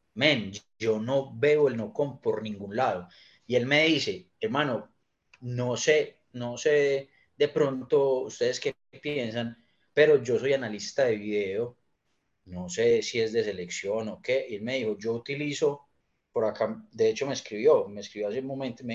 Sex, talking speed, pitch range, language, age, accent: male, 180 wpm, 110-150 Hz, Spanish, 30-49, Colombian